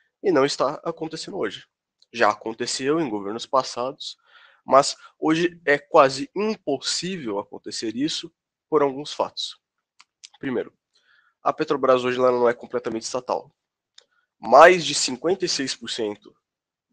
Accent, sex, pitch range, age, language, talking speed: Brazilian, male, 120-175 Hz, 20-39, Portuguese, 110 wpm